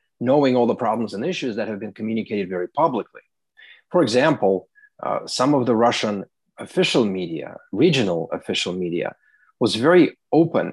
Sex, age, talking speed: male, 30-49, 150 wpm